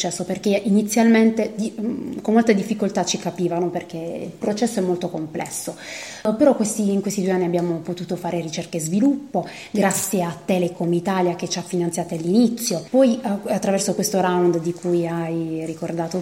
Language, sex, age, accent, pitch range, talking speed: Italian, female, 30-49, native, 175-230 Hz, 155 wpm